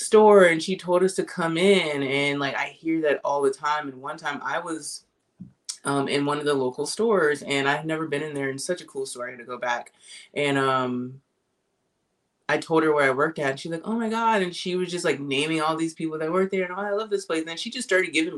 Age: 20-39